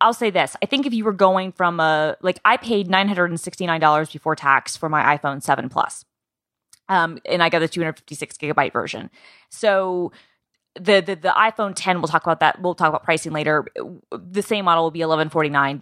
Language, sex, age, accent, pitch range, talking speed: English, female, 20-39, American, 155-185 Hz, 240 wpm